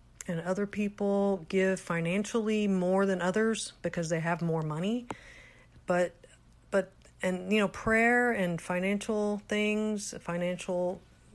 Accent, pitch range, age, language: American, 165-200 Hz, 40-59, English